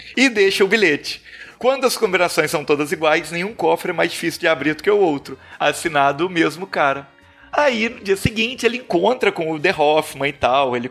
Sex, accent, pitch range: male, Brazilian, 165-215 Hz